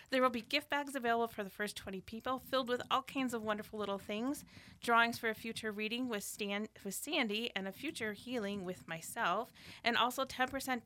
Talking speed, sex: 205 wpm, female